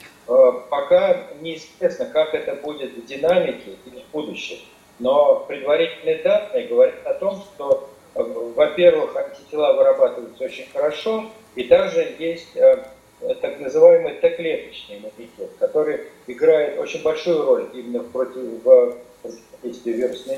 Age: 40-59